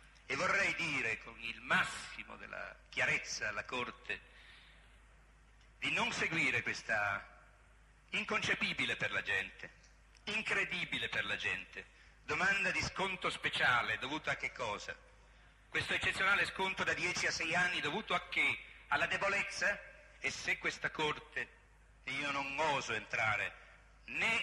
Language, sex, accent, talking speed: Italian, male, native, 130 wpm